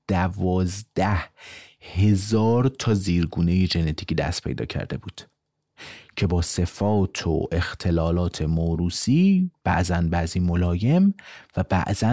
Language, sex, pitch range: Persian, male, 85-115 Hz